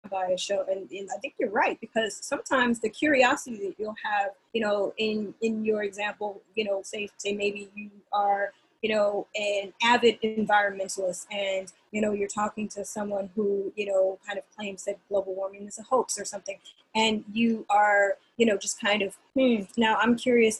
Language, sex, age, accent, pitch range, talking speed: English, female, 20-39, American, 200-225 Hz, 195 wpm